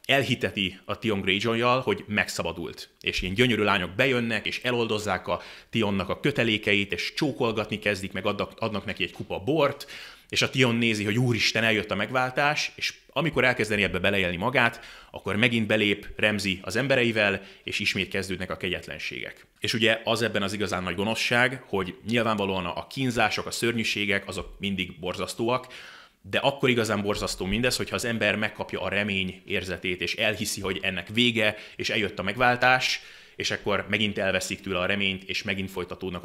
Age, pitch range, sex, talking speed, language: 30-49, 95-115 Hz, male, 165 wpm, Hungarian